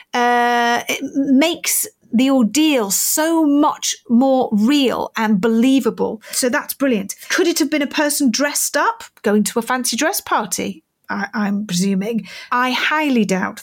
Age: 40-59